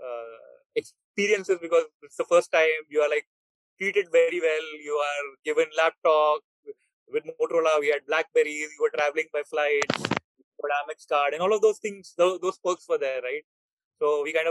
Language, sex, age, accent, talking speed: Hindi, male, 30-49, native, 175 wpm